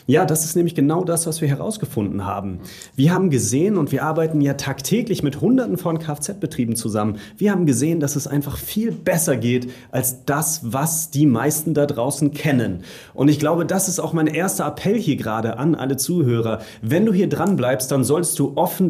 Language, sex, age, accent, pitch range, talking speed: German, male, 30-49, German, 120-160 Hz, 200 wpm